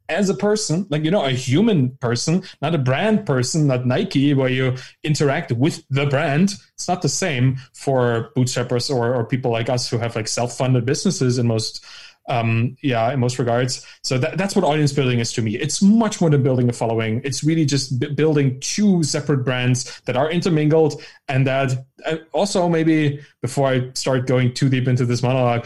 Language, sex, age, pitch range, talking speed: English, male, 20-39, 130-160 Hz, 195 wpm